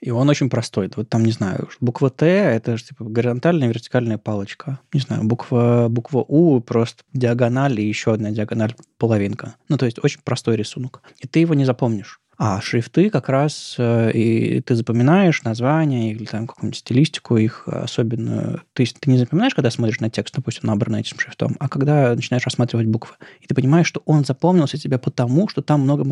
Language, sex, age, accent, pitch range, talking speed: Russian, male, 20-39, native, 115-145 Hz, 185 wpm